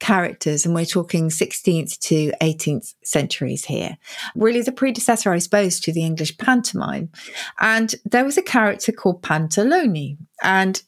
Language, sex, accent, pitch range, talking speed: English, female, British, 160-210 Hz, 145 wpm